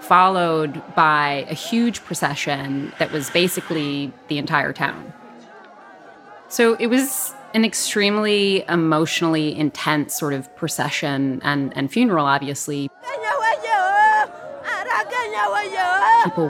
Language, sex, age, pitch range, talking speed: English, female, 30-49, 150-190 Hz, 95 wpm